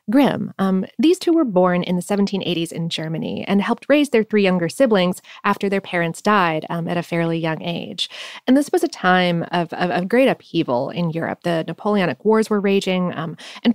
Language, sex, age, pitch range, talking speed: English, female, 30-49, 175-230 Hz, 205 wpm